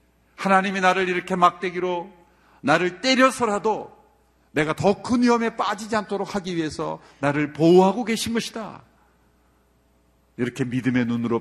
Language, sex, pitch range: Korean, male, 100-170 Hz